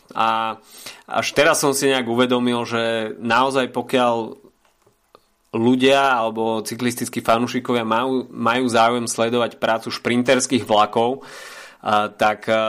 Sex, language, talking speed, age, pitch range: male, Slovak, 105 wpm, 20-39, 115-125 Hz